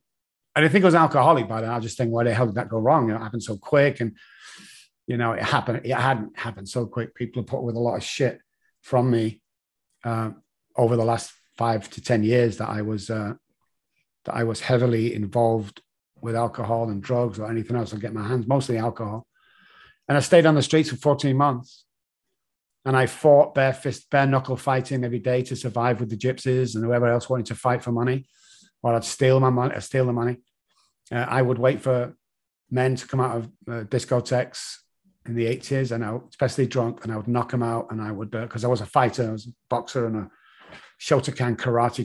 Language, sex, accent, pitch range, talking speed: English, male, British, 115-130 Hz, 225 wpm